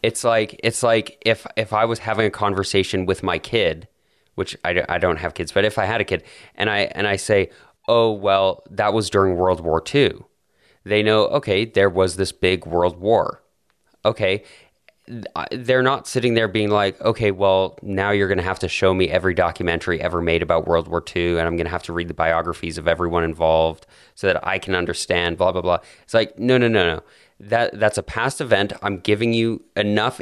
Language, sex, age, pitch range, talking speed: English, male, 30-49, 90-105 Hz, 215 wpm